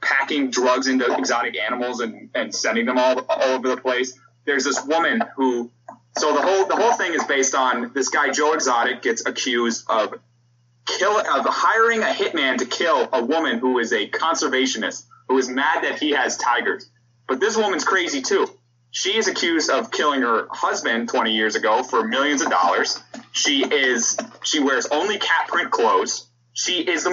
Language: English